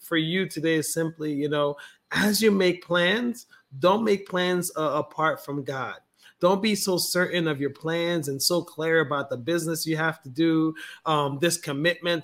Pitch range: 150-175 Hz